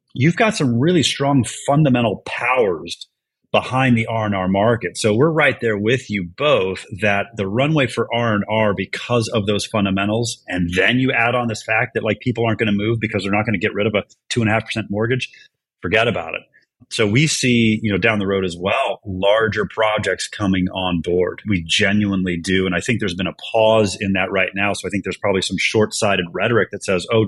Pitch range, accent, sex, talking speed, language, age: 100-120 Hz, American, male, 210 wpm, English, 30-49